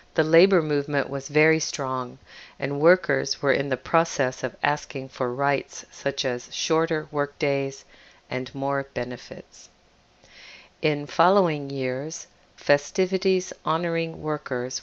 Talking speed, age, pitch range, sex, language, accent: 120 wpm, 50-69, 130-160 Hz, female, English, American